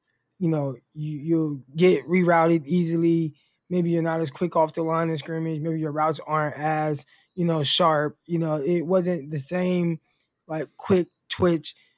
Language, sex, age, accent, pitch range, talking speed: English, male, 20-39, American, 155-180 Hz, 170 wpm